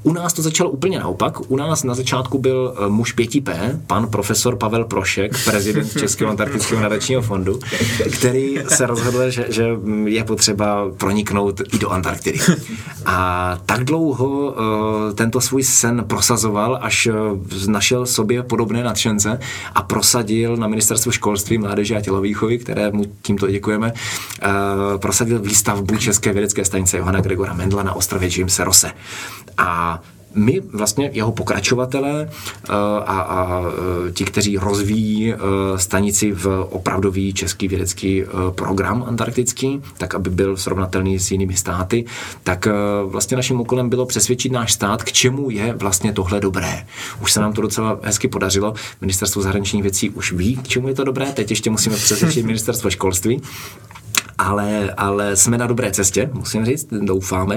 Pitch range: 95-120 Hz